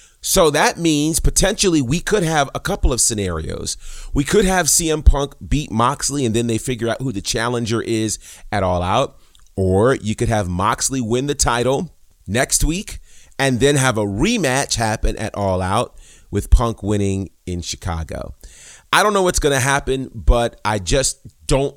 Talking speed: 180 wpm